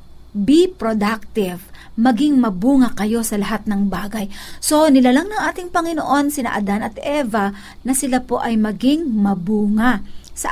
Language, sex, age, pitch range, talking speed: Filipino, female, 50-69, 205-265 Hz, 145 wpm